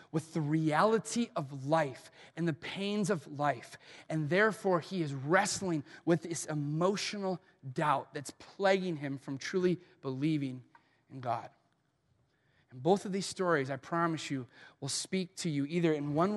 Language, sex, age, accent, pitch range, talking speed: English, male, 30-49, American, 155-220 Hz, 155 wpm